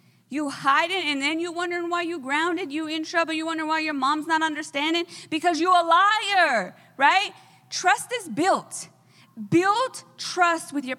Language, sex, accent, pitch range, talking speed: English, female, American, 230-320 Hz, 175 wpm